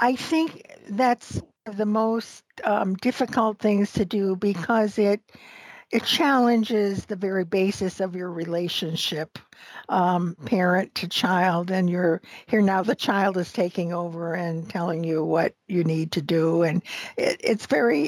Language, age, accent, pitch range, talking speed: English, 60-79, American, 180-220 Hz, 150 wpm